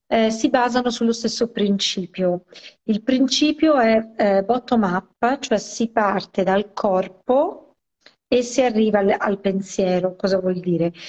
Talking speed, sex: 140 wpm, female